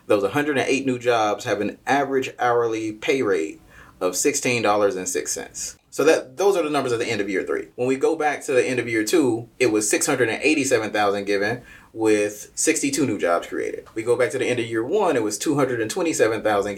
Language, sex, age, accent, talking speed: English, male, 20-39, American, 195 wpm